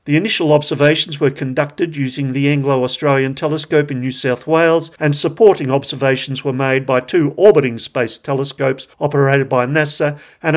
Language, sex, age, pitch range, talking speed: English, male, 50-69, 125-155 Hz, 155 wpm